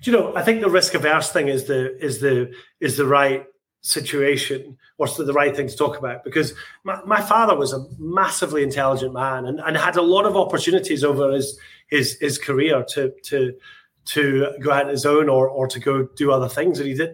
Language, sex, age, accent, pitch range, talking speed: English, male, 30-49, British, 140-180 Hz, 215 wpm